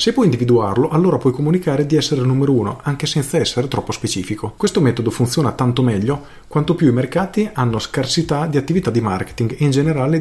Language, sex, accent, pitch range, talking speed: Italian, male, native, 110-145 Hz, 200 wpm